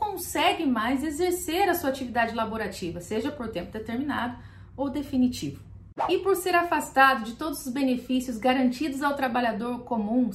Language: Portuguese